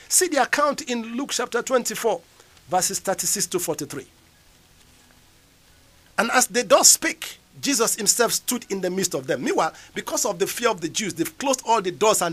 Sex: male